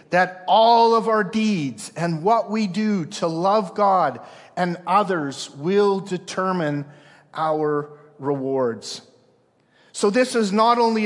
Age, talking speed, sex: 50-69, 125 wpm, male